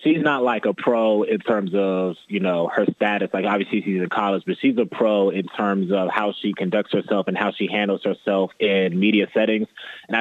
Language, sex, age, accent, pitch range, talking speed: English, male, 20-39, American, 100-115 Hz, 220 wpm